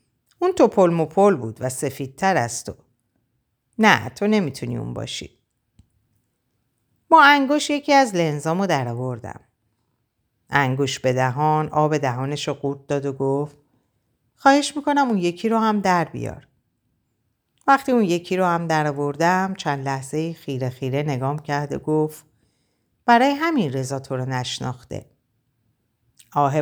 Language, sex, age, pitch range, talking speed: Persian, female, 50-69, 130-175 Hz, 135 wpm